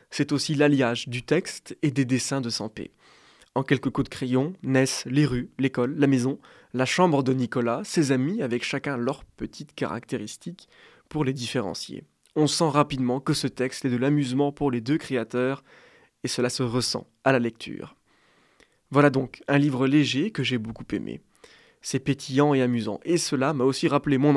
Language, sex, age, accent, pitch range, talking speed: French, male, 20-39, French, 125-150 Hz, 180 wpm